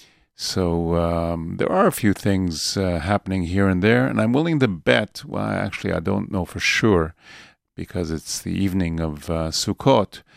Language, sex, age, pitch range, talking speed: English, male, 50-69, 85-100 Hz, 180 wpm